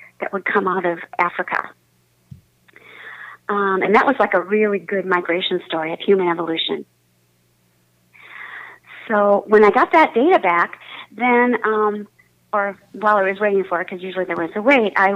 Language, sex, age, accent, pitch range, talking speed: English, female, 40-59, American, 180-220 Hz, 165 wpm